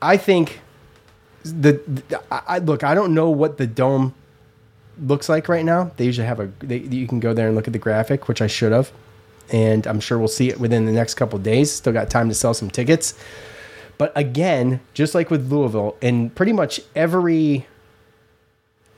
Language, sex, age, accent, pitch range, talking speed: English, male, 20-39, American, 110-145 Hz, 200 wpm